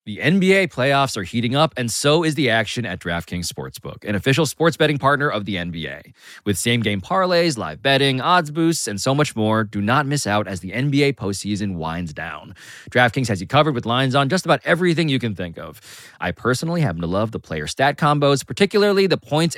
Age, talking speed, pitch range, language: 20-39, 210 wpm, 95-145 Hz, English